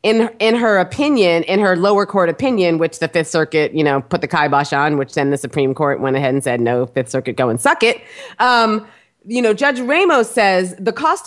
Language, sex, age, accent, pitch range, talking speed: English, female, 30-49, American, 170-230 Hz, 230 wpm